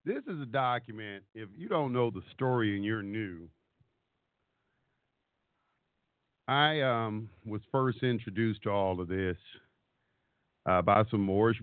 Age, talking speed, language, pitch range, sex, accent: 50-69, 135 wpm, English, 100-120 Hz, male, American